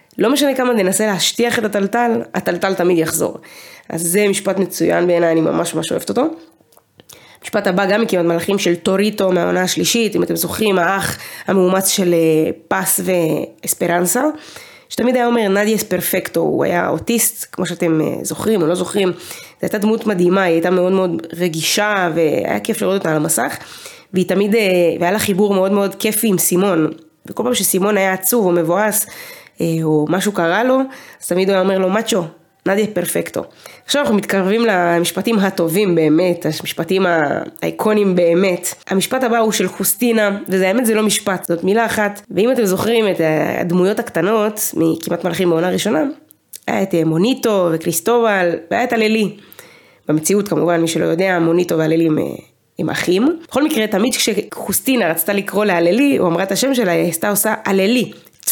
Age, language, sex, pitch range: 20-39, Hebrew, female, 175-220 Hz